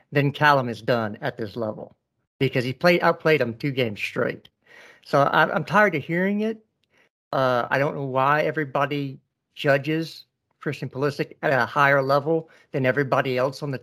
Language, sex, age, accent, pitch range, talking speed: English, male, 60-79, American, 125-160 Hz, 170 wpm